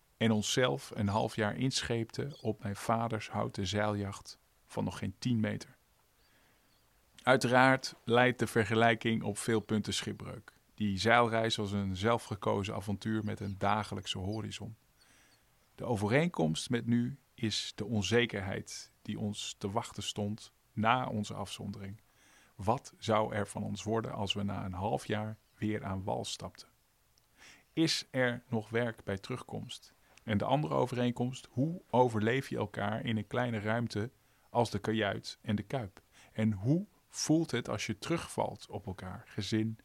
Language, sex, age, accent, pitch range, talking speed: Dutch, male, 50-69, Dutch, 105-120 Hz, 150 wpm